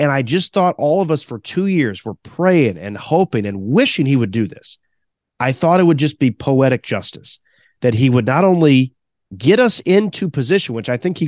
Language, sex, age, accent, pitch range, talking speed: English, male, 30-49, American, 115-170 Hz, 220 wpm